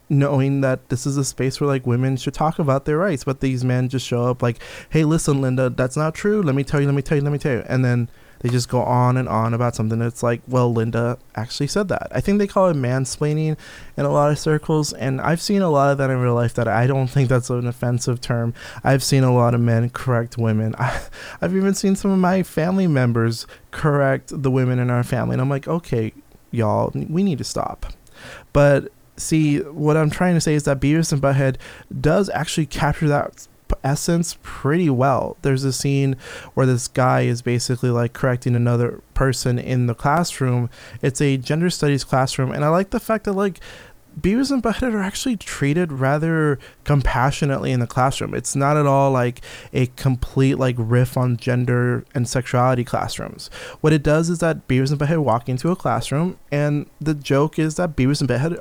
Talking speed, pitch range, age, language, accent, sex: 210 wpm, 125-150 Hz, 20-39, English, American, male